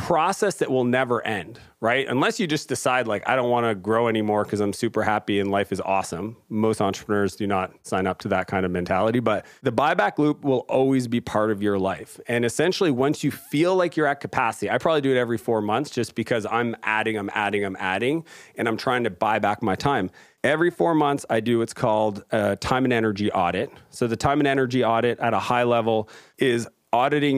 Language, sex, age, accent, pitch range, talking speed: English, male, 40-59, American, 110-135 Hz, 225 wpm